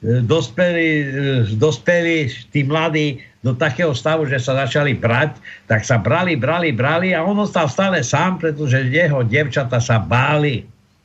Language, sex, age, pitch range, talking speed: Slovak, male, 60-79, 115-155 Hz, 140 wpm